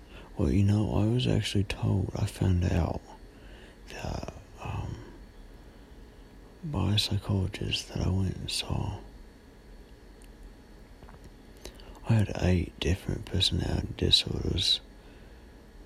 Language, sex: English, male